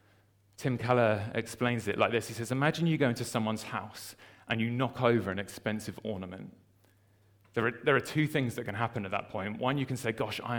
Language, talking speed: English, 220 wpm